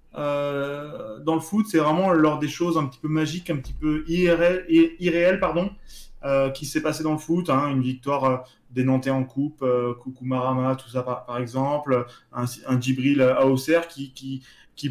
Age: 20-39